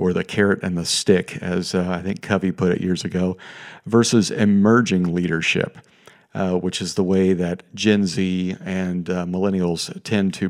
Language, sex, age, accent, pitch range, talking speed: English, male, 50-69, American, 90-105 Hz, 175 wpm